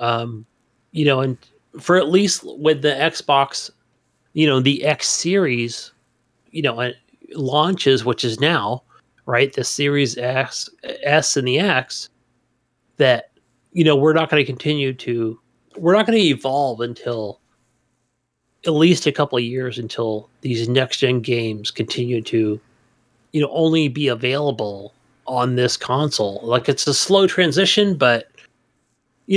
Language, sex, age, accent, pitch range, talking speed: English, male, 30-49, American, 120-155 Hz, 145 wpm